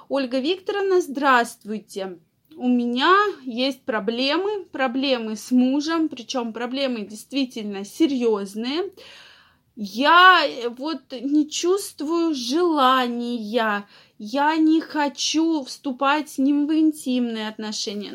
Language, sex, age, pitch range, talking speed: Russian, female, 20-39, 235-320 Hz, 95 wpm